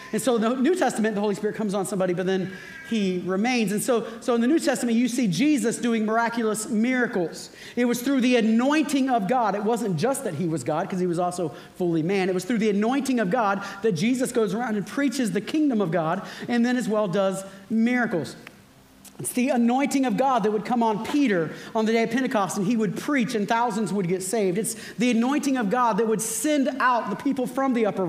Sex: male